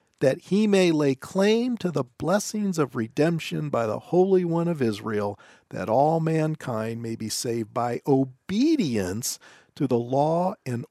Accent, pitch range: American, 135-205 Hz